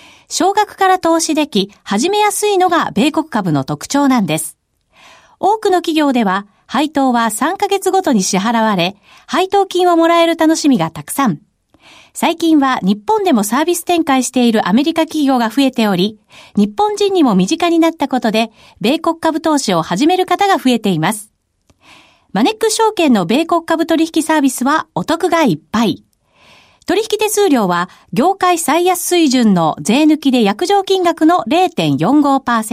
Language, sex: Japanese, female